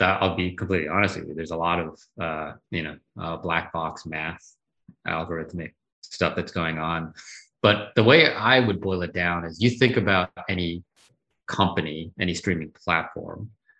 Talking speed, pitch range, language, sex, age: 160 wpm, 85-105 Hz, Vietnamese, male, 30-49